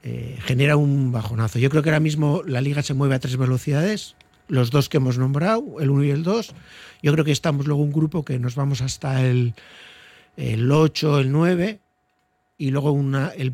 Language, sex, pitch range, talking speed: Spanish, male, 125-155 Hz, 205 wpm